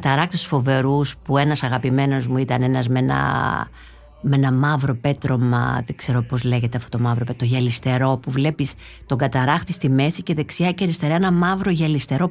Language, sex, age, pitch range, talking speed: Greek, female, 50-69, 130-175 Hz, 180 wpm